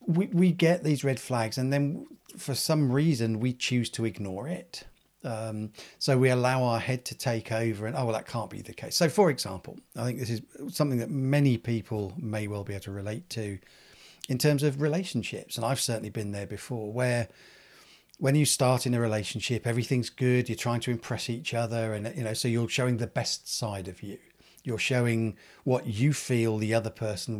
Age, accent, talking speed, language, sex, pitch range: 40-59, British, 210 wpm, English, male, 110-140 Hz